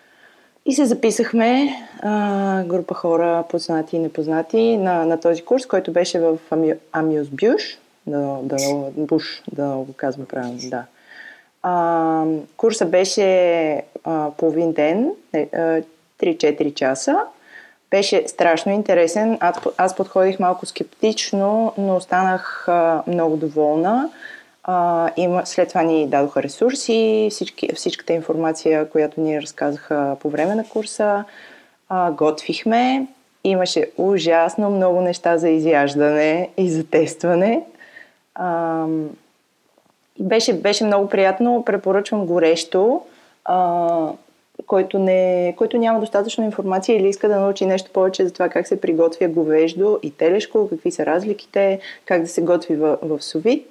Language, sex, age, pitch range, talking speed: Bulgarian, female, 20-39, 160-205 Hz, 120 wpm